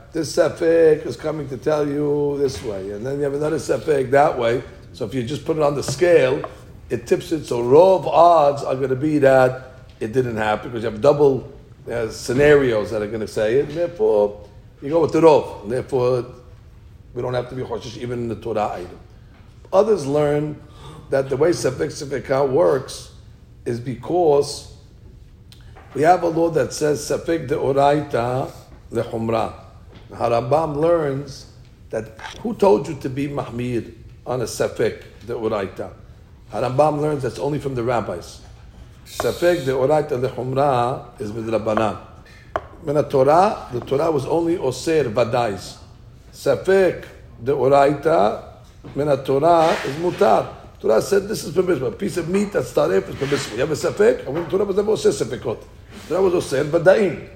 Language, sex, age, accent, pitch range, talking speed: English, male, 50-69, American, 115-160 Hz, 170 wpm